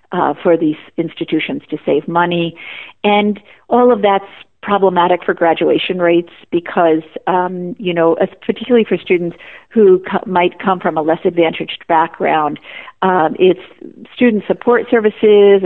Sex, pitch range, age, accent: female, 165-200 Hz, 50-69, American